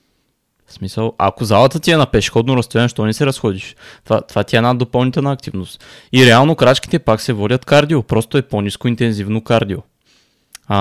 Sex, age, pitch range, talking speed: male, 20-39, 105-125 Hz, 185 wpm